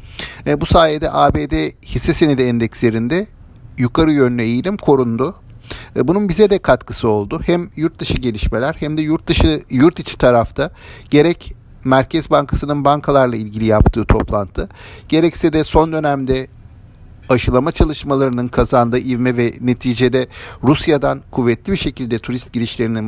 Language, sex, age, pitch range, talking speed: Turkish, male, 50-69, 110-160 Hz, 135 wpm